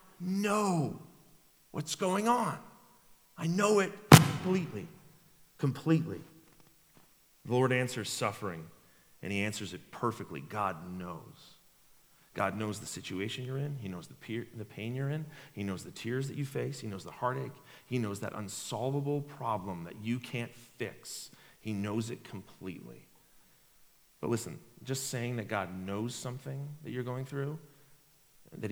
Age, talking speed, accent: 40-59, 145 wpm, American